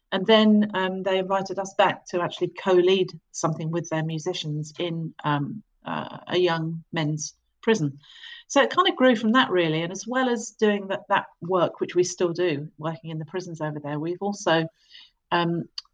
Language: English